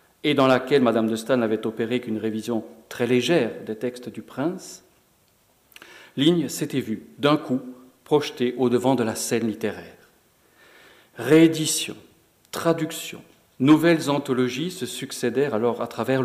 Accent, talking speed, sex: French, 135 wpm, male